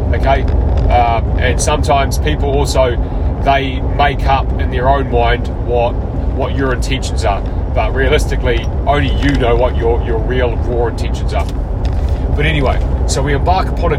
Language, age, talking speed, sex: English, 30-49, 160 wpm, male